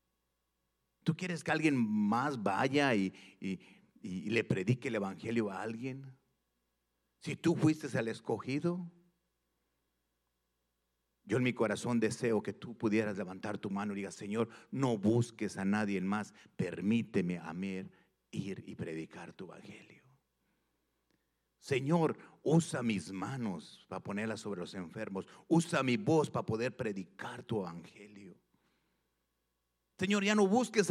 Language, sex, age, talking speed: English, male, 50-69, 130 wpm